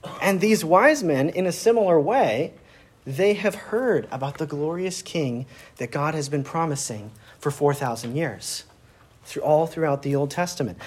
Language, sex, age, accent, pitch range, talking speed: English, male, 40-59, American, 125-165 Hz, 160 wpm